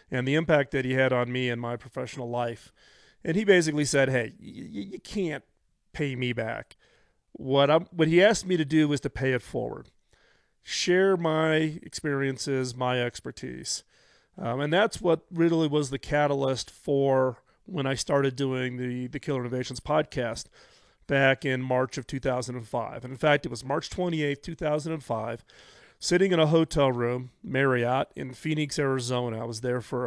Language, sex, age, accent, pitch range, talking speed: English, male, 40-59, American, 130-160 Hz, 170 wpm